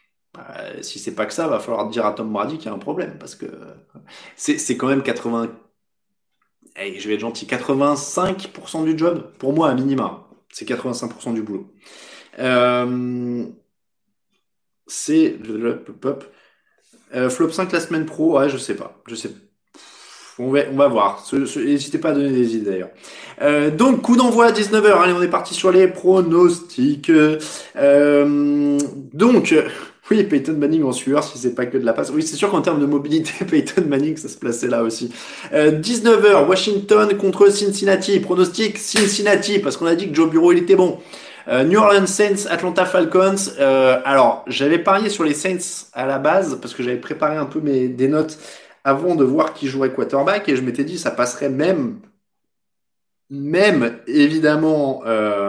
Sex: male